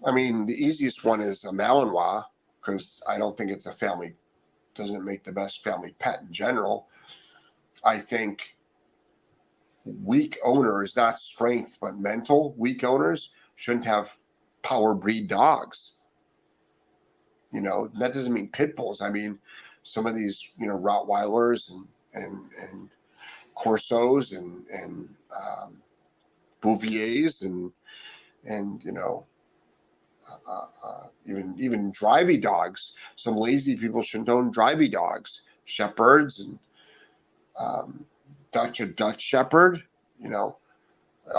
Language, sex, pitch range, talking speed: English, male, 110-140 Hz, 130 wpm